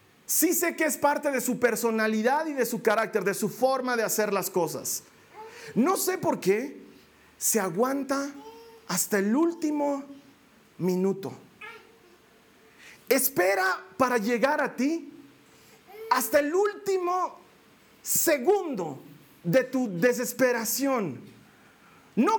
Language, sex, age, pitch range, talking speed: Spanish, male, 40-59, 220-300 Hz, 115 wpm